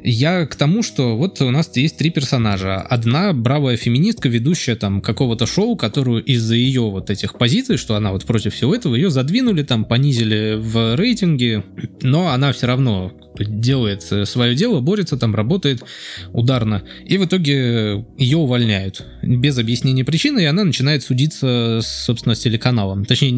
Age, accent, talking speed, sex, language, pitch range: 20-39, native, 160 wpm, male, Russian, 110-145 Hz